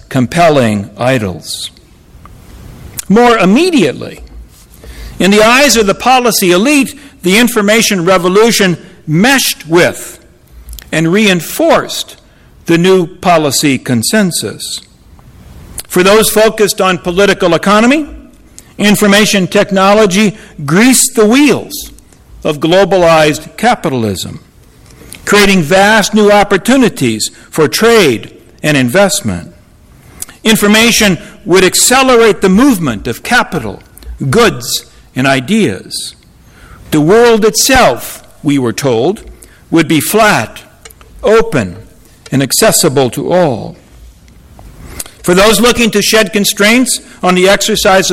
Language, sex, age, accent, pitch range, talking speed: English, male, 60-79, American, 145-220 Hz, 95 wpm